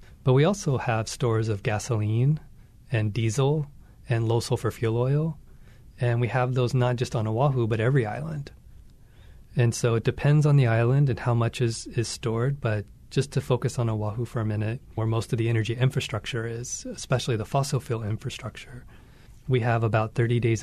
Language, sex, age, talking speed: English, male, 30-49, 185 wpm